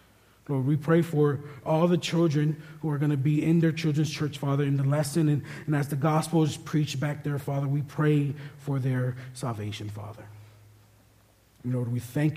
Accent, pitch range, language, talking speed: American, 115-150 Hz, English, 190 wpm